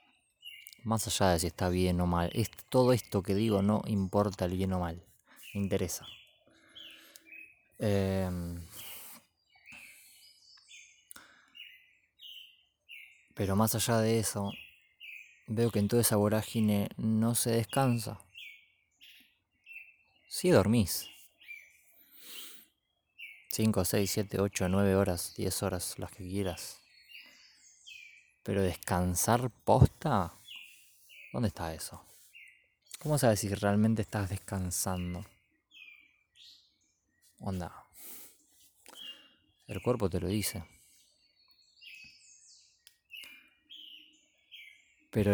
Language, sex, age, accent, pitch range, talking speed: Spanish, male, 20-39, Argentinian, 95-115 Hz, 90 wpm